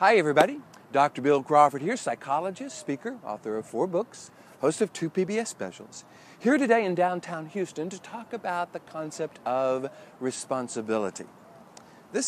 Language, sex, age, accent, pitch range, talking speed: English, male, 40-59, American, 130-195 Hz, 145 wpm